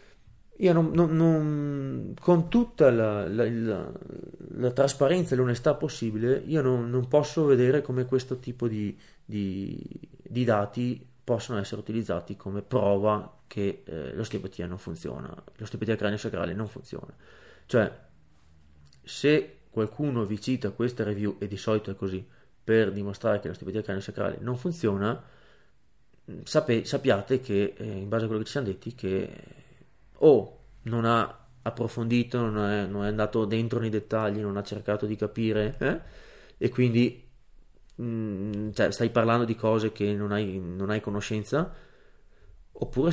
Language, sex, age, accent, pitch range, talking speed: Italian, male, 30-49, native, 105-120 Hz, 145 wpm